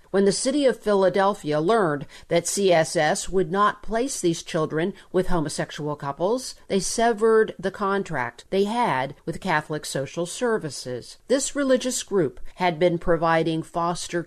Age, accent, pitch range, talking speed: 50-69, American, 160-205 Hz, 140 wpm